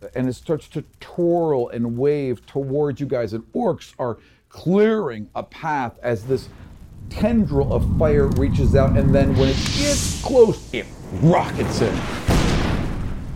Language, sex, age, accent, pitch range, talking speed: English, male, 40-59, American, 105-135 Hz, 145 wpm